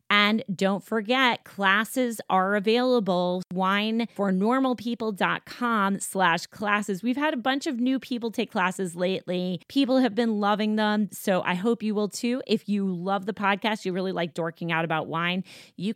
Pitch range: 175-210 Hz